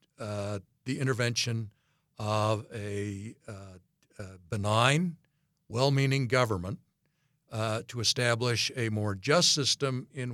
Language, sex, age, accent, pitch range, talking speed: English, male, 60-79, American, 110-135 Hz, 105 wpm